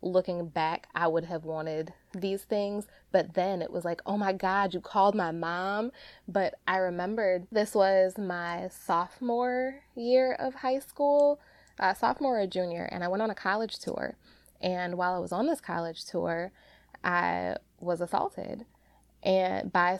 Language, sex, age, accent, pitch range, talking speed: English, female, 20-39, American, 170-200 Hz, 165 wpm